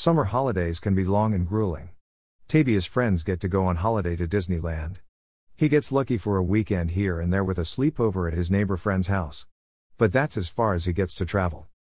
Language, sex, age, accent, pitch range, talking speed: English, male, 50-69, American, 85-110 Hz, 210 wpm